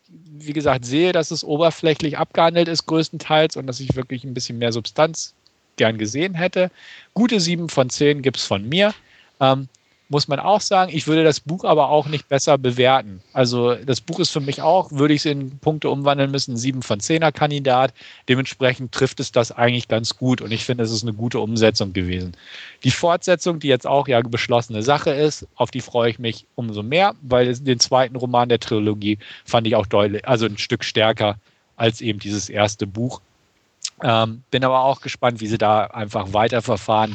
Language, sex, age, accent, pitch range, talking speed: German, male, 40-59, German, 110-145 Hz, 195 wpm